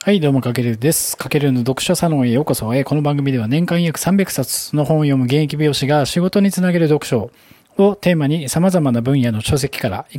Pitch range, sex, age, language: 125-170 Hz, male, 20-39, Japanese